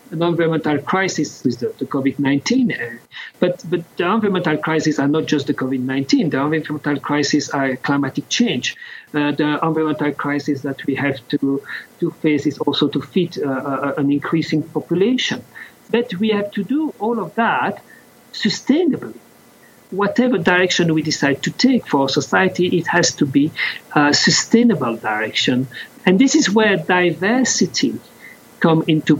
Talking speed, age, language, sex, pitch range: 150 wpm, 50-69, English, male, 145-200 Hz